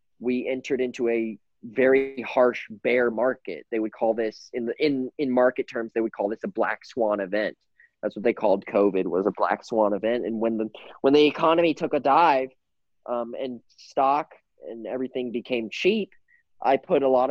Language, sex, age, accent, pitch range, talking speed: English, male, 20-39, American, 115-135 Hz, 195 wpm